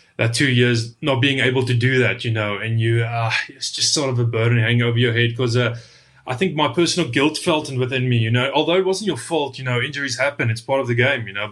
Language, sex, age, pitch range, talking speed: English, male, 20-39, 115-135 Hz, 270 wpm